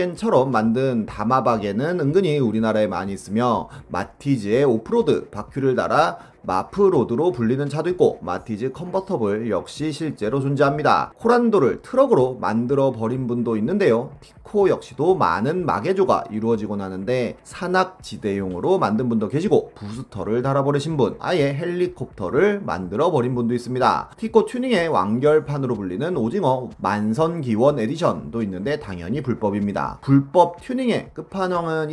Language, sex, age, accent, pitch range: Korean, male, 30-49, native, 115-180 Hz